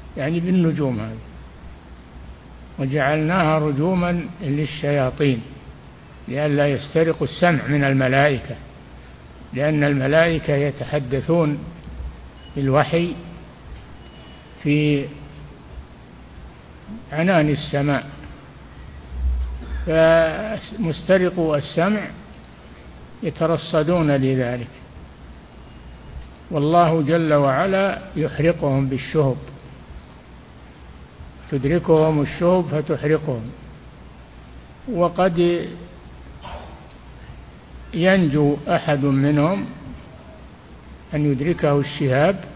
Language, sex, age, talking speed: Arabic, male, 60-79, 50 wpm